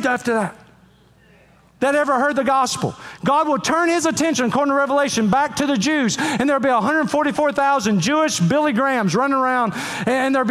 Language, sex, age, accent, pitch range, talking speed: English, male, 40-59, American, 215-290 Hz, 170 wpm